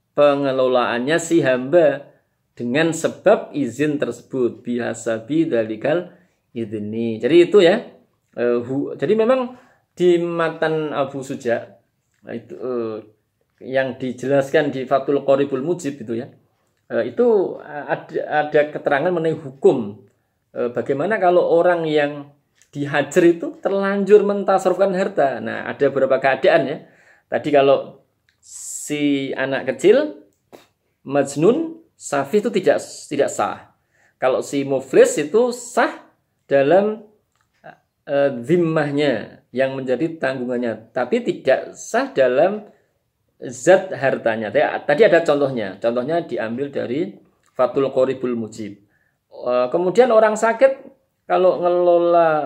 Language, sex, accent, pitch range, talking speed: Indonesian, male, native, 130-175 Hz, 105 wpm